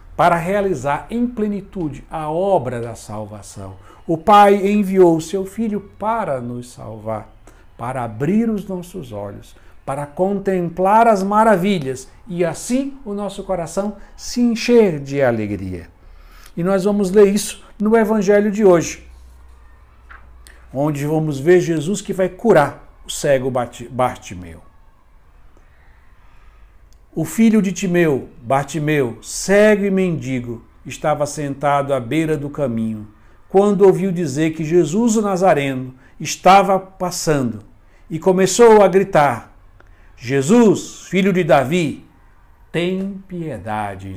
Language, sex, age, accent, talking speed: Portuguese, male, 60-79, Brazilian, 120 wpm